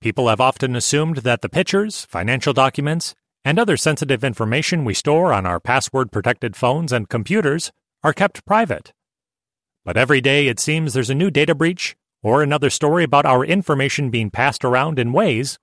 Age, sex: 30-49, male